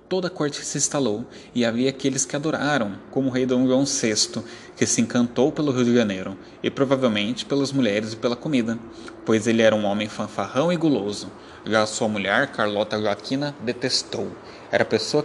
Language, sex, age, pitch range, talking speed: Portuguese, male, 20-39, 110-145 Hz, 180 wpm